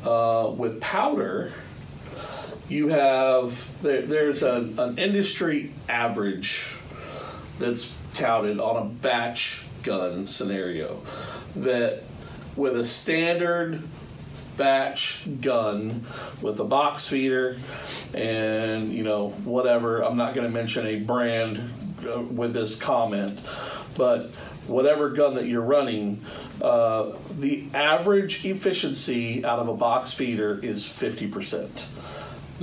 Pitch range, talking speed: 110-145 Hz, 105 wpm